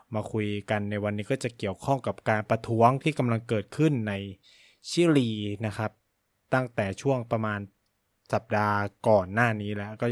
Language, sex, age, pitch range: Thai, male, 20-39, 105-135 Hz